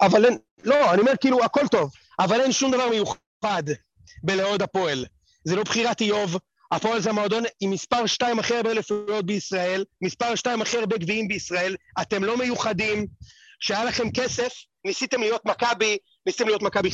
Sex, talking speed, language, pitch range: male, 170 wpm, Hebrew, 195-250 Hz